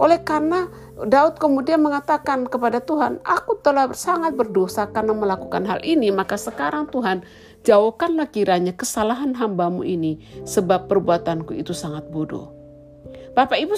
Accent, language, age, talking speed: native, Indonesian, 50-69, 130 wpm